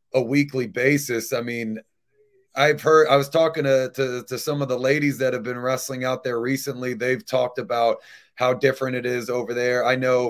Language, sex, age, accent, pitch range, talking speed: English, male, 30-49, American, 125-155 Hz, 205 wpm